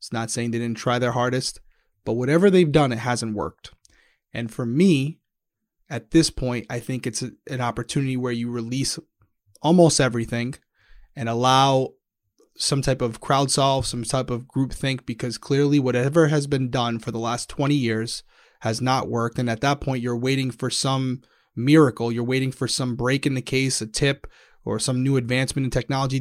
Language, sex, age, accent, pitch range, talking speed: English, male, 30-49, American, 120-150 Hz, 190 wpm